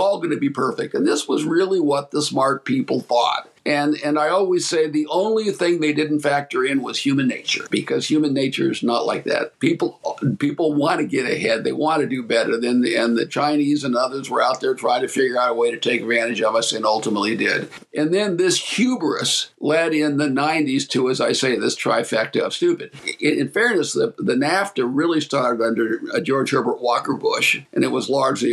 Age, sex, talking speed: 50-69, male, 220 wpm